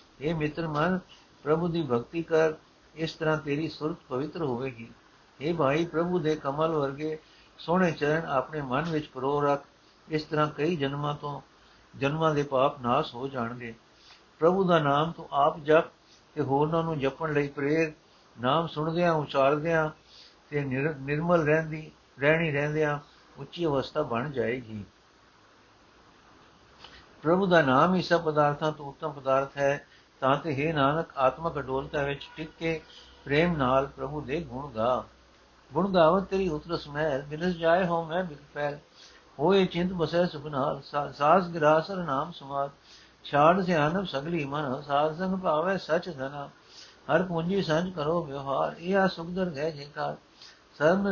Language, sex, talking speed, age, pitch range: Punjabi, male, 145 wpm, 60-79, 140-165 Hz